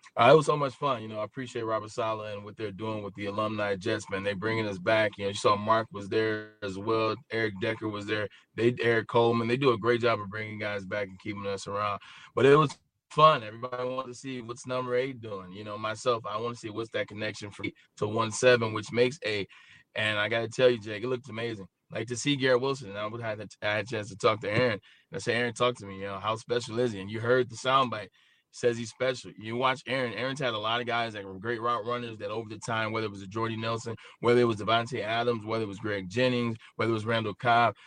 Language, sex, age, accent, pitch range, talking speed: English, male, 20-39, American, 105-120 Hz, 270 wpm